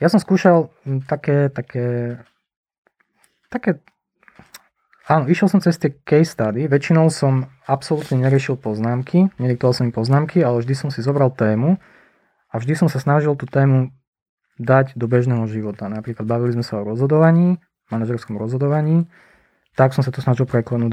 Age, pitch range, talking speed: 20-39, 115-145 Hz, 150 wpm